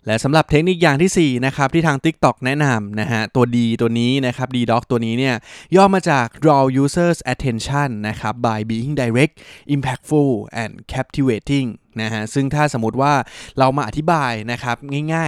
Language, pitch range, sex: Thai, 115-145 Hz, male